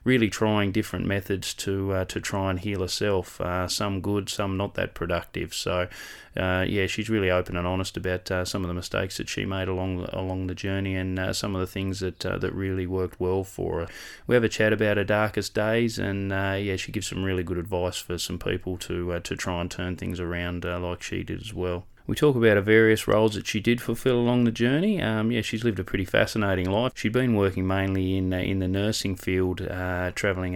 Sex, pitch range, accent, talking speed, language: male, 90-100 Hz, Australian, 235 wpm, English